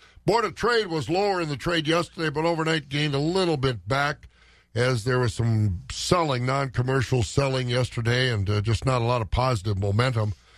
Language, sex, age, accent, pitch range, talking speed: English, male, 50-69, American, 115-145 Hz, 185 wpm